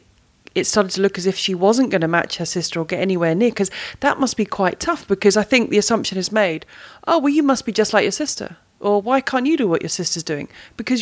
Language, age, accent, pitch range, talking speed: English, 30-49, British, 185-230 Hz, 265 wpm